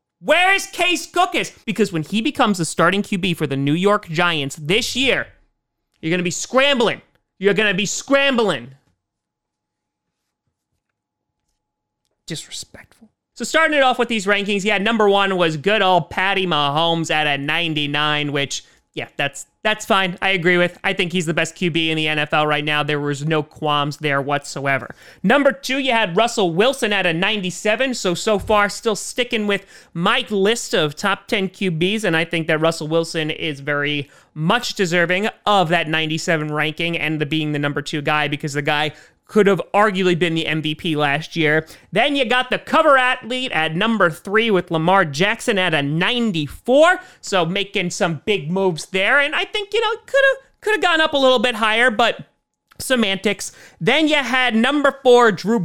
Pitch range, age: 155-230 Hz, 30-49